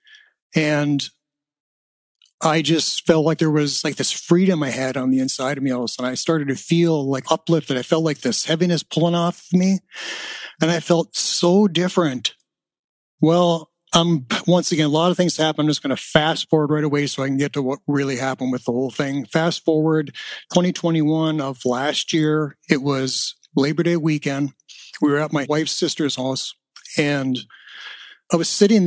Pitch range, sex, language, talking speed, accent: 145-170 Hz, male, English, 190 wpm, American